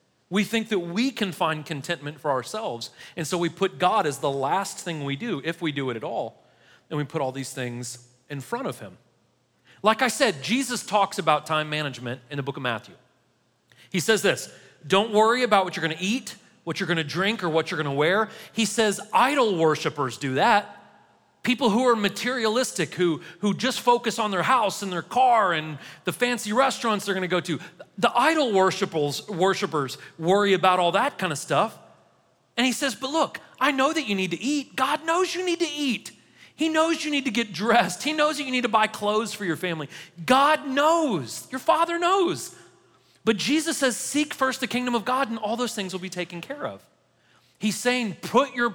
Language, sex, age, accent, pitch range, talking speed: English, male, 40-59, American, 160-245 Hz, 210 wpm